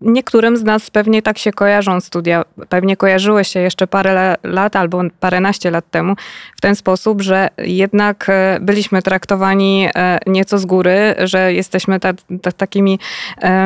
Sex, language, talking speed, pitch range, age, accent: female, Polish, 135 wpm, 185-215 Hz, 20-39, native